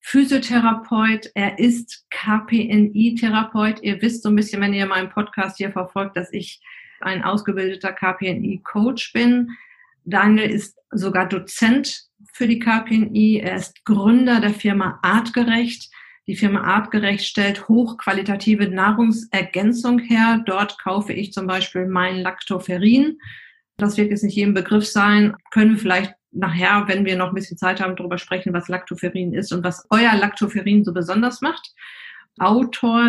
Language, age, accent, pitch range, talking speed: German, 40-59, German, 190-225 Hz, 140 wpm